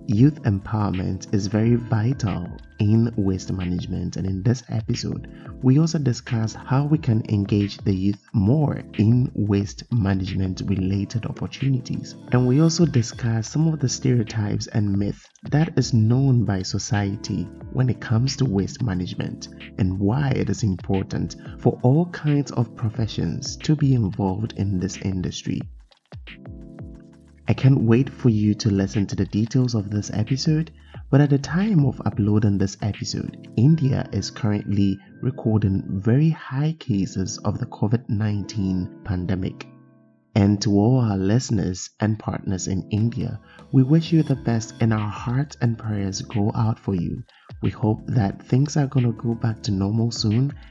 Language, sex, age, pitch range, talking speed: English, male, 30-49, 100-130 Hz, 155 wpm